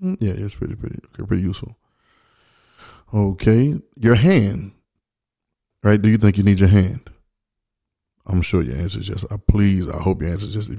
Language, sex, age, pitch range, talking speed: English, male, 20-39, 95-115 Hz, 180 wpm